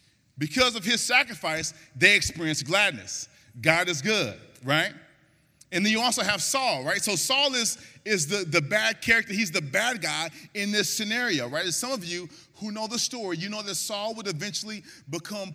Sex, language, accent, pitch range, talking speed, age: male, English, American, 165-250 Hz, 185 wpm, 30-49